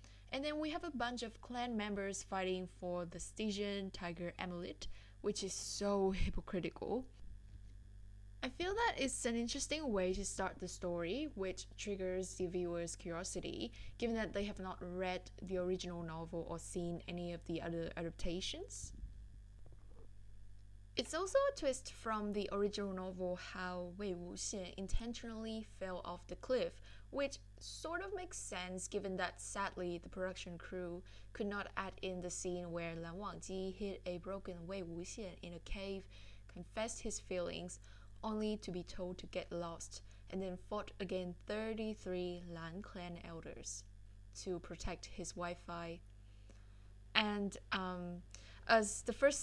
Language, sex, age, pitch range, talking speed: English, female, 10-29, 170-205 Hz, 150 wpm